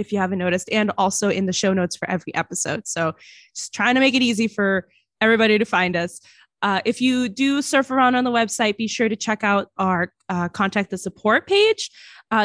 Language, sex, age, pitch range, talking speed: English, female, 20-39, 190-255 Hz, 220 wpm